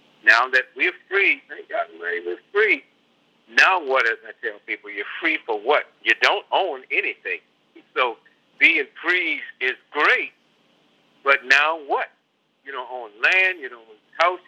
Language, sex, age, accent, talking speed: English, male, 50-69, American, 160 wpm